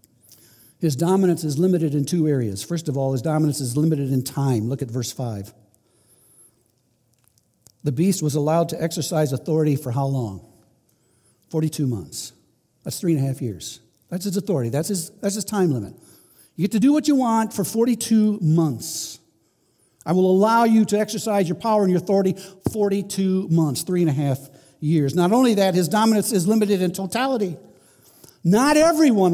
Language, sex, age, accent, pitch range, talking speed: English, male, 60-79, American, 145-225 Hz, 175 wpm